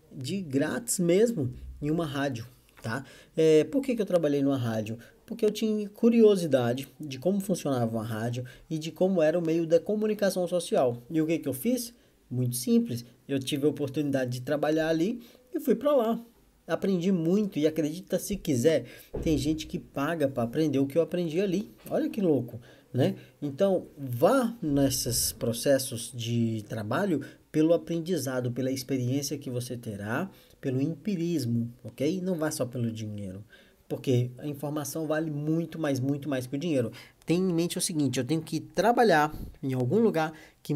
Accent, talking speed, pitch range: Brazilian, 170 wpm, 125-170 Hz